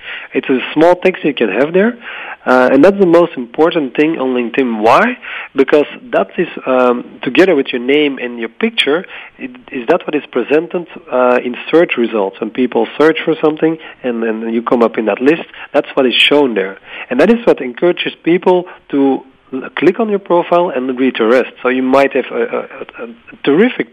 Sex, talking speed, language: male, 200 wpm, English